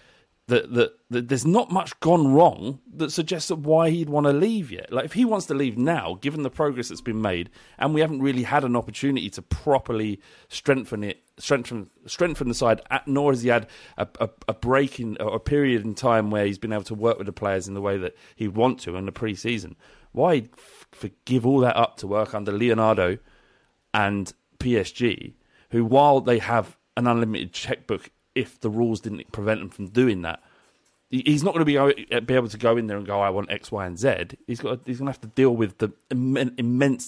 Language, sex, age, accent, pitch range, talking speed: English, male, 30-49, British, 105-135 Hz, 220 wpm